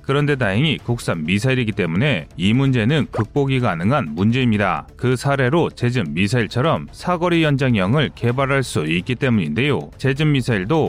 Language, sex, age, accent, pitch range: Korean, male, 30-49, native, 120-155 Hz